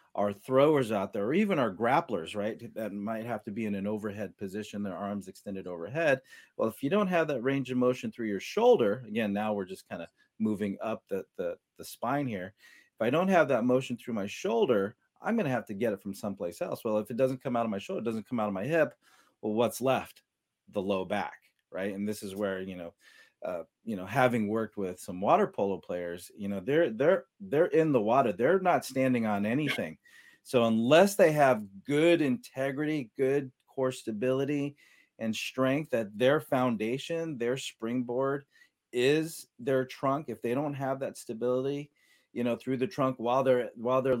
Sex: male